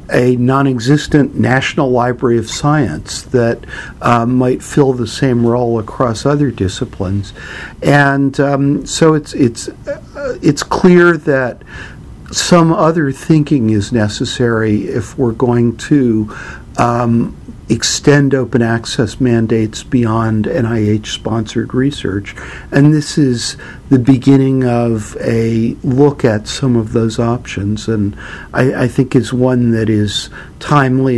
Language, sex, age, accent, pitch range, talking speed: English, male, 60-79, American, 110-135 Hz, 125 wpm